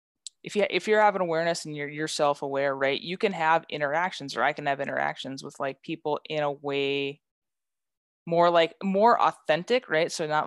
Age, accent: 20-39, American